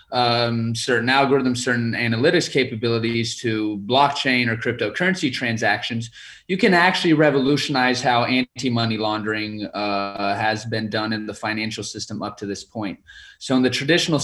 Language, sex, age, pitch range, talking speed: English, male, 20-39, 115-145 Hz, 145 wpm